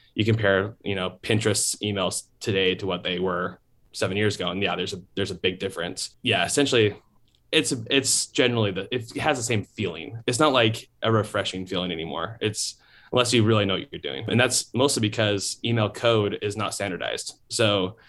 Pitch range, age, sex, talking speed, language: 95-115 Hz, 20-39, male, 190 wpm, English